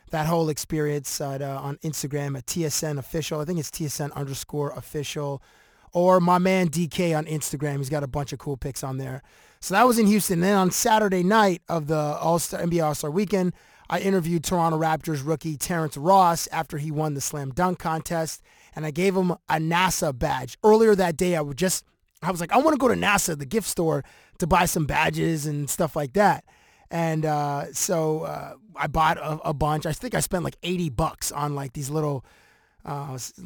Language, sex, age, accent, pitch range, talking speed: English, male, 20-39, American, 145-180 Hz, 205 wpm